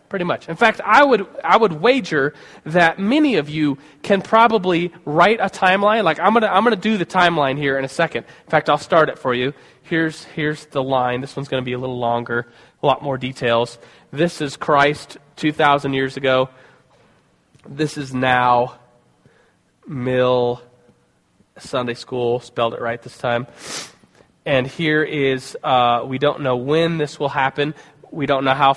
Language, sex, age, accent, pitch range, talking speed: English, male, 20-39, American, 135-185 Hz, 180 wpm